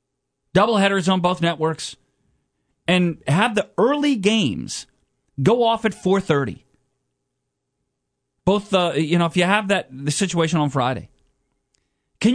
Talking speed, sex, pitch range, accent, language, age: 130 wpm, male, 135-185 Hz, American, English, 40-59